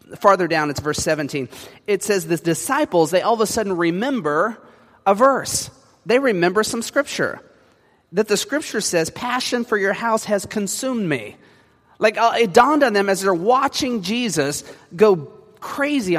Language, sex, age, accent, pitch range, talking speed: English, male, 30-49, American, 150-220 Hz, 165 wpm